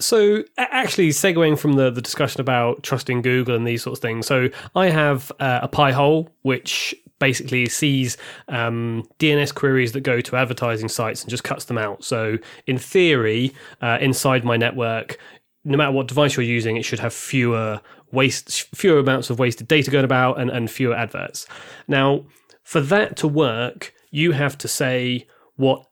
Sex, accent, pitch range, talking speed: male, British, 120-150 Hz, 180 wpm